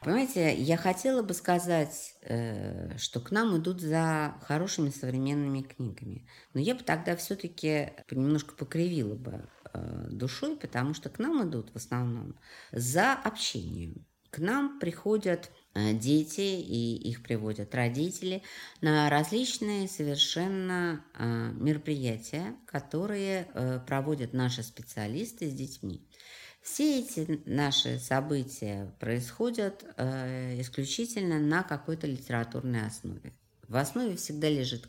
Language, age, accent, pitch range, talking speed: Russian, 50-69, native, 115-170 Hz, 110 wpm